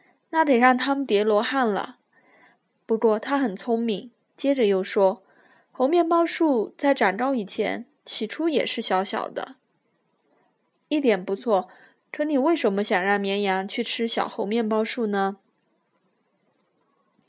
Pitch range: 205-255 Hz